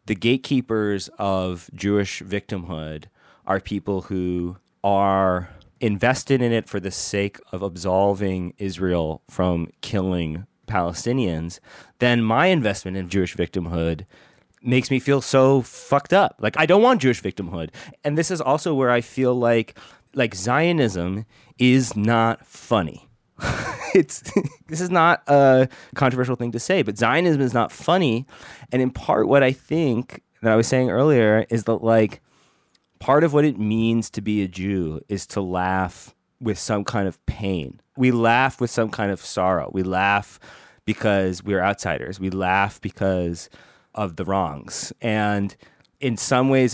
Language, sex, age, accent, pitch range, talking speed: English, male, 30-49, American, 95-125 Hz, 155 wpm